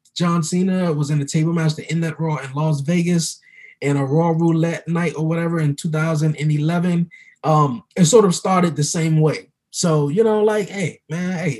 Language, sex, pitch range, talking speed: English, male, 155-210 Hz, 195 wpm